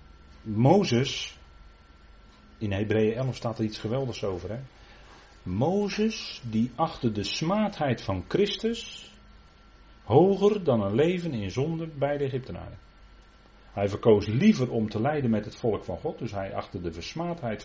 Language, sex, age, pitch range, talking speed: Dutch, male, 40-59, 100-135 Hz, 140 wpm